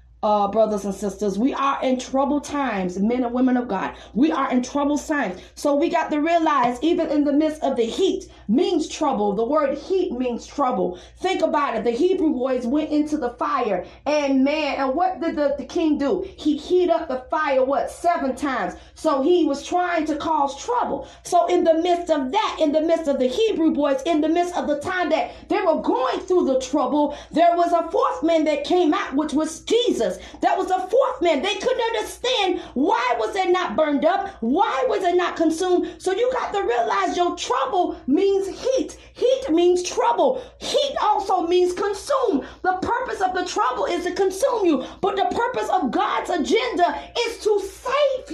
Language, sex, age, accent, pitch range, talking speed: English, female, 40-59, American, 285-370 Hz, 200 wpm